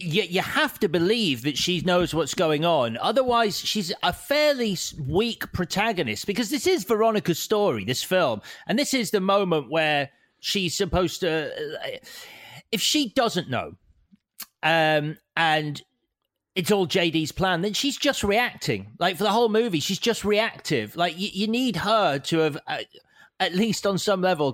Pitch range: 145-205 Hz